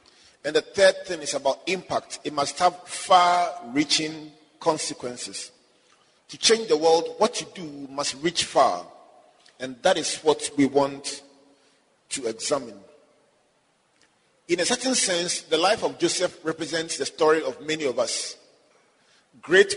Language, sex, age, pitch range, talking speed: English, male, 40-59, 155-220 Hz, 140 wpm